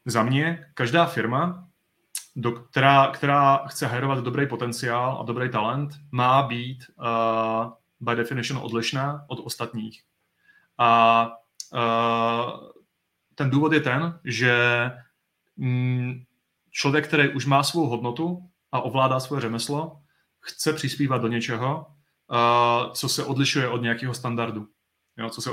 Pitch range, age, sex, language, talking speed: 115-135 Hz, 30-49, male, Czech, 125 wpm